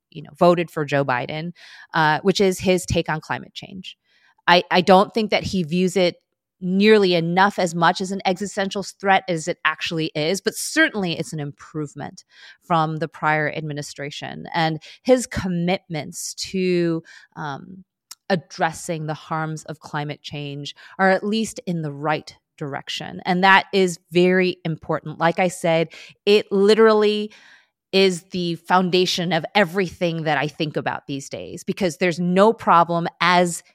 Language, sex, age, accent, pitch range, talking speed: English, female, 30-49, American, 155-195 Hz, 155 wpm